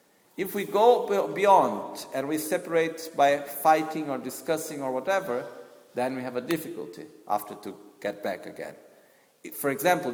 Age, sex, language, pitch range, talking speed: 50-69, male, Italian, 135-190 Hz, 150 wpm